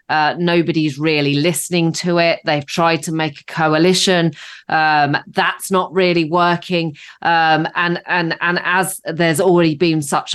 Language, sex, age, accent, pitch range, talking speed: English, female, 30-49, British, 140-210 Hz, 150 wpm